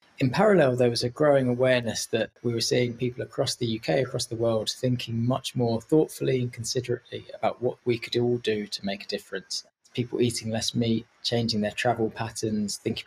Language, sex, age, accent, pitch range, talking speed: English, male, 20-39, British, 105-125 Hz, 200 wpm